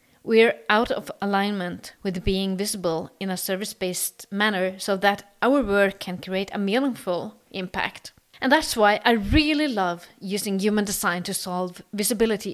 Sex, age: female, 30-49